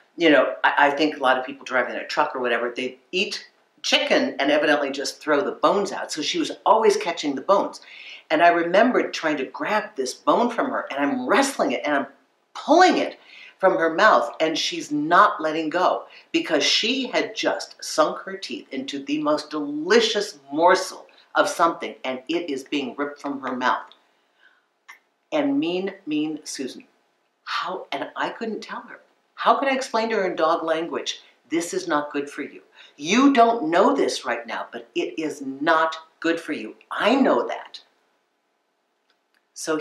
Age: 50-69